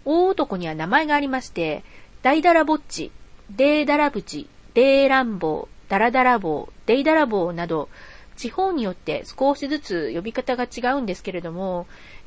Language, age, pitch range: Japanese, 40-59, 175-270 Hz